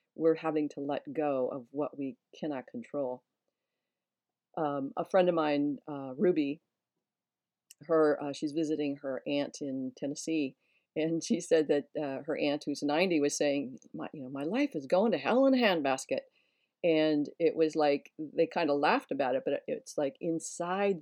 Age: 40-59